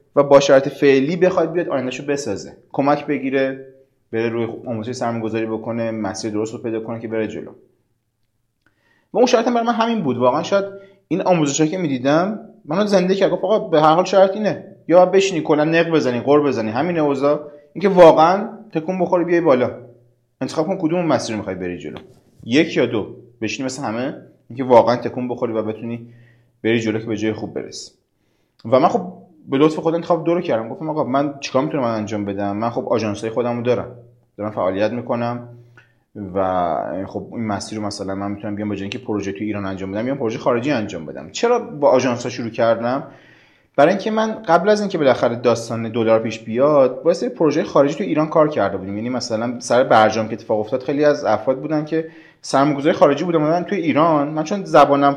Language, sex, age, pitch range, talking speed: Persian, male, 30-49, 115-165 Hz, 195 wpm